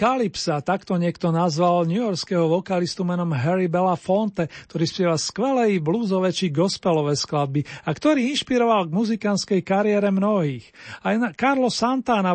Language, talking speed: Slovak, 125 wpm